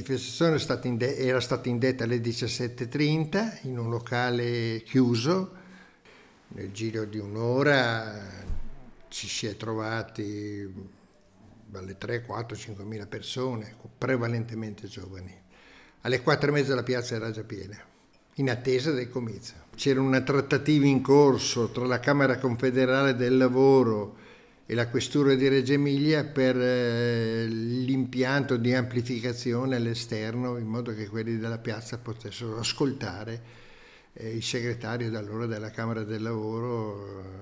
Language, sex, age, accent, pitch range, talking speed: Italian, male, 60-79, native, 110-130 Hz, 115 wpm